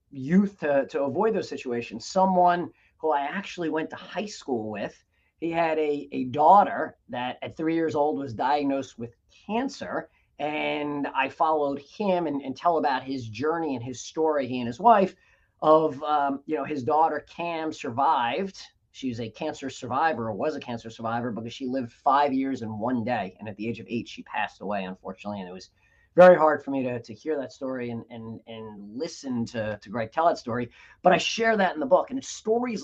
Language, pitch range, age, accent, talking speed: English, 125-180 Hz, 30-49, American, 205 wpm